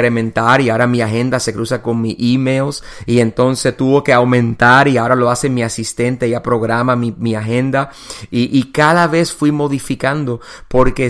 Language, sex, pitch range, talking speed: English, male, 115-130 Hz, 175 wpm